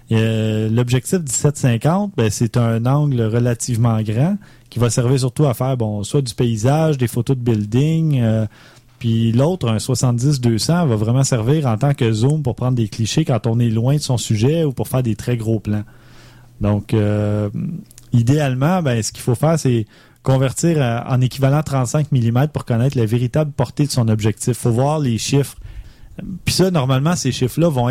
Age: 30-49